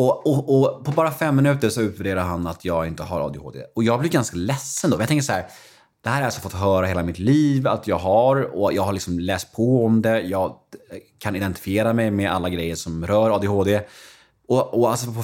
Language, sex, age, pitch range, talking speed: English, male, 30-49, 95-135 Hz, 230 wpm